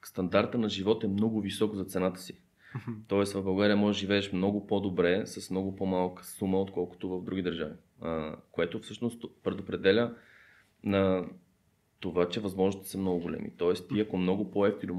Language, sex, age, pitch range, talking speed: Bulgarian, male, 20-39, 90-105 Hz, 165 wpm